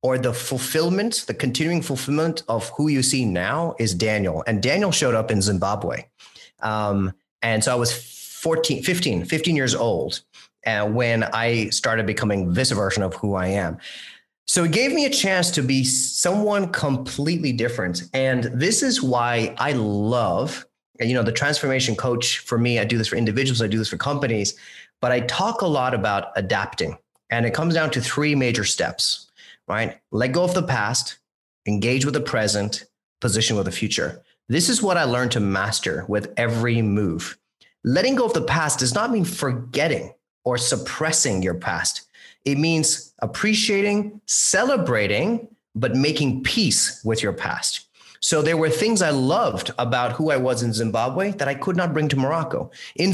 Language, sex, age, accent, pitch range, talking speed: English, male, 30-49, American, 110-160 Hz, 175 wpm